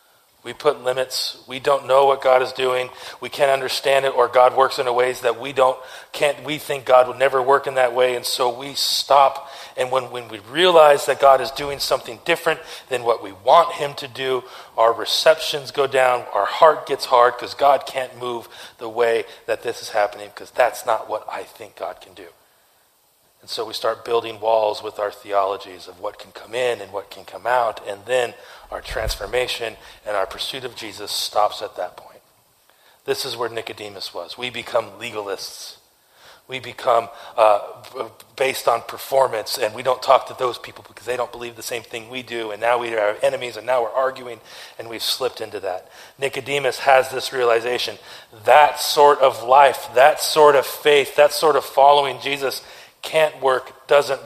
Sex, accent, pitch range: male, American, 120-140 Hz